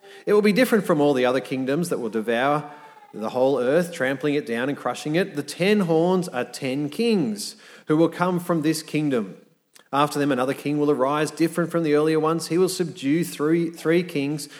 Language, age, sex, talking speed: English, 30-49, male, 205 wpm